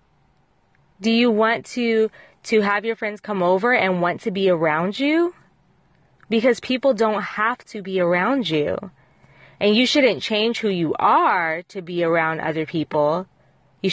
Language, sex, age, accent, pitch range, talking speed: English, female, 20-39, American, 170-235 Hz, 160 wpm